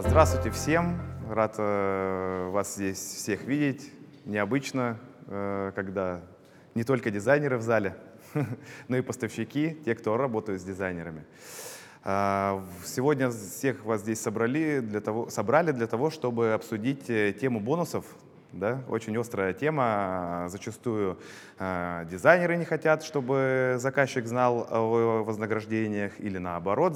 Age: 20-39